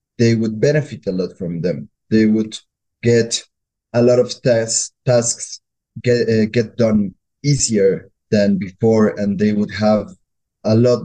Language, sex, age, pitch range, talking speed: English, male, 20-39, 100-120 Hz, 150 wpm